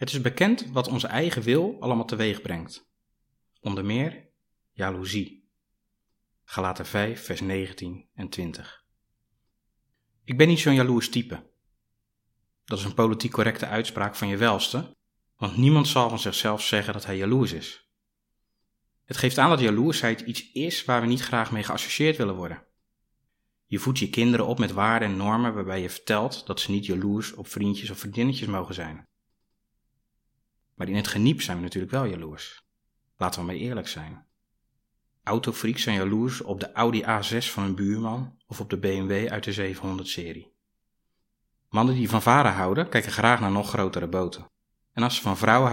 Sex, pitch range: male, 95-120 Hz